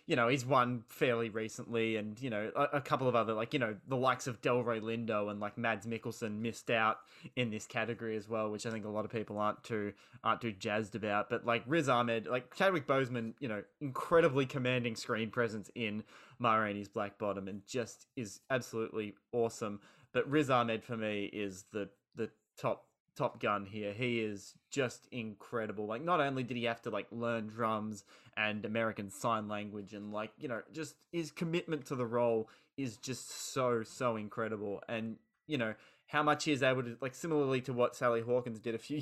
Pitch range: 110-130 Hz